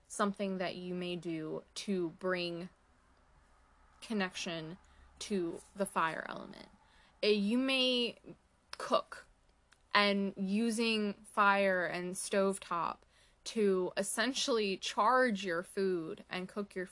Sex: female